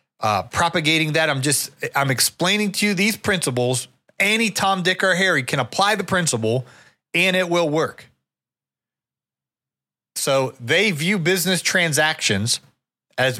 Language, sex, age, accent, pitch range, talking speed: English, male, 30-49, American, 135-180 Hz, 135 wpm